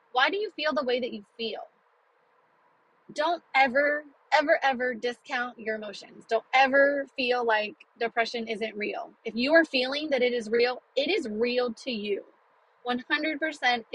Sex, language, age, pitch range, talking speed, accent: female, English, 20-39, 220-280 Hz, 160 wpm, American